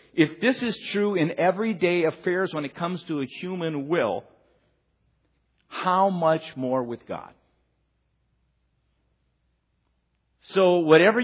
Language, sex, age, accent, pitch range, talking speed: English, male, 50-69, American, 135-180 Hz, 110 wpm